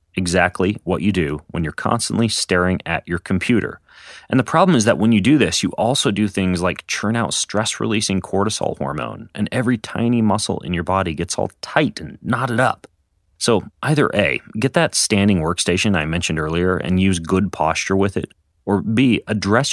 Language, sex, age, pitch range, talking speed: English, male, 30-49, 90-110 Hz, 190 wpm